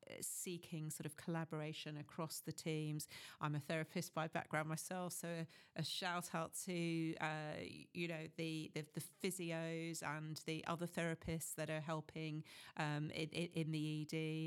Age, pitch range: 40-59, 155-175 Hz